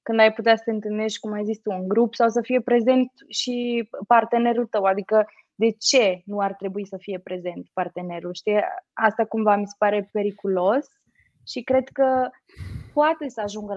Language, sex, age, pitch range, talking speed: Romanian, female, 20-39, 200-260 Hz, 185 wpm